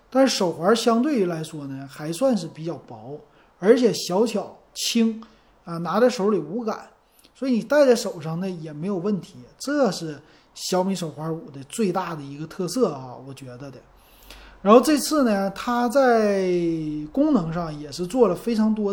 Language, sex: Chinese, male